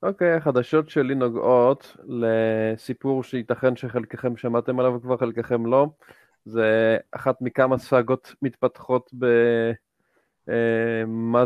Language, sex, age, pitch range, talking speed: Hebrew, male, 20-39, 120-140 Hz, 100 wpm